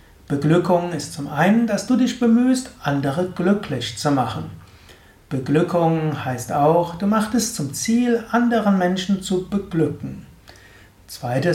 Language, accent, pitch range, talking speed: German, German, 145-185 Hz, 130 wpm